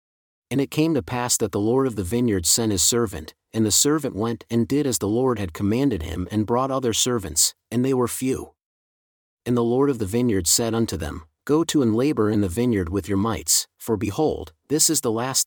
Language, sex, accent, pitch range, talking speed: English, male, American, 100-125 Hz, 230 wpm